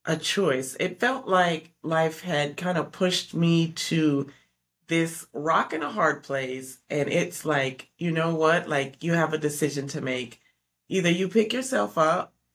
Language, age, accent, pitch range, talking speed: English, 30-49, American, 140-175 Hz, 170 wpm